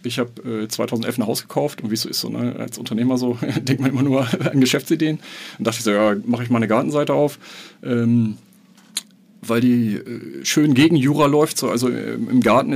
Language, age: German, 40-59